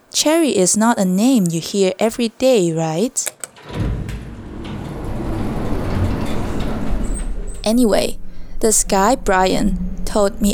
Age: 20-39